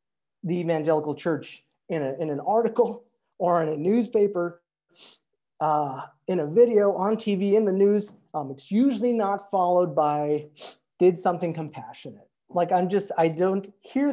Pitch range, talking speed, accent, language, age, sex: 155-200 Hz, 150 wpm, American, English, 30-49, male